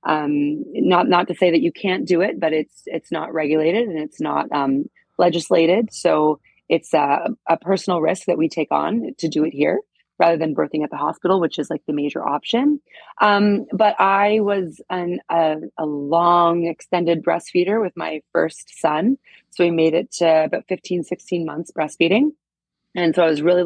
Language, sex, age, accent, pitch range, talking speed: English, female, 30-49, American, 150-175 Hz, 190 wpm